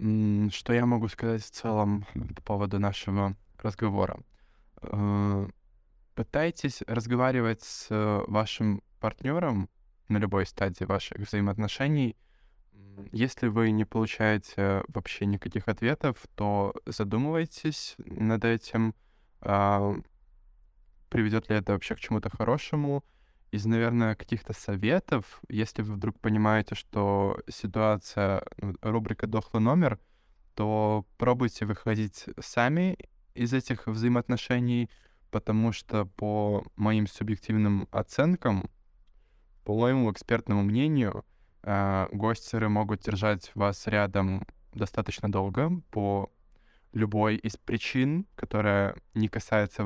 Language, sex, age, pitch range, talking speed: Russian, male, 20-39, 100-115 Hz, 100 wpm